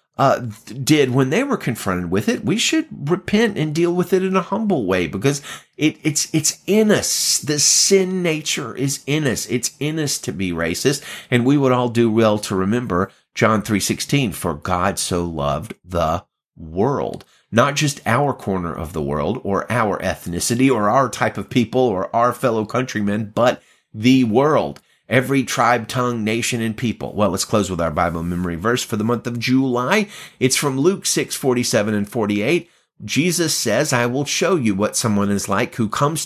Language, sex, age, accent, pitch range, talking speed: English, male, 30-49, American, 105-150 Hz, 185 wpm